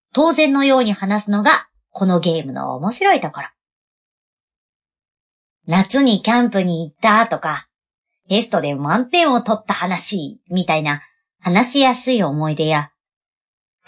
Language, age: Japanese, 40-59